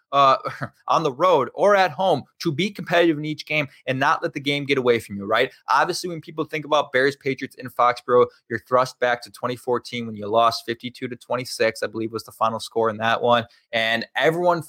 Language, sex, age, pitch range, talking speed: English, male, 20-39, 125-160 Hz, 215 wpm